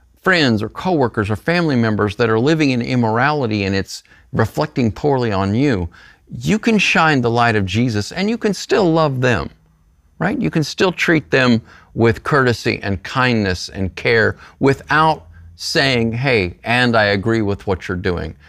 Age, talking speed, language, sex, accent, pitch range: 50-69, 170 wpm, English, male, American, 100-140 Hz